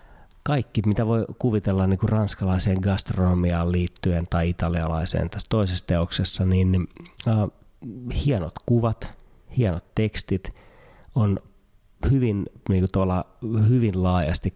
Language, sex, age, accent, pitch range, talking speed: Finnish, male, 30-49, native, 90-110 Hz, 85 wpm